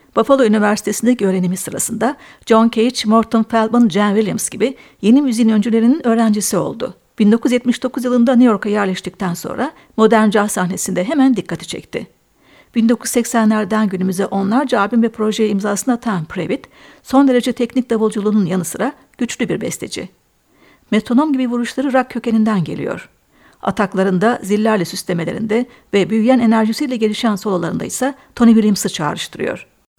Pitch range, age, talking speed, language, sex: 205-245 Hz, 60-79, 130 wpm, Turkish, female